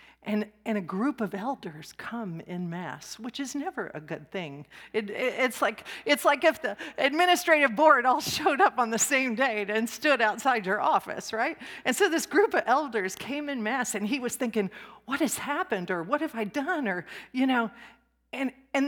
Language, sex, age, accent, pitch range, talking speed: English, female, 40-59, American, 210-285 Hz, 205 wpm